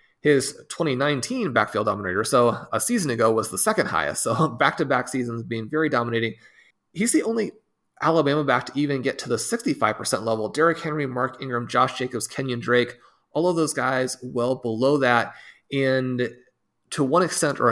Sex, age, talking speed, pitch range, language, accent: male, 30-49, 175 wpm, 115-140 Hz, English, American